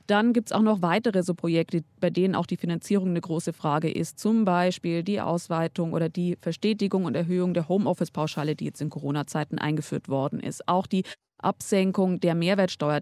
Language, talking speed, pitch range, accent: German, 195 wpm, 175-215 Hz, German